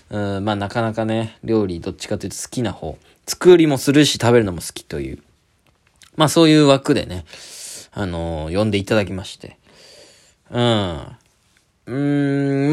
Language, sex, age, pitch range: Japanese, male, 20-39, 105-160 Hz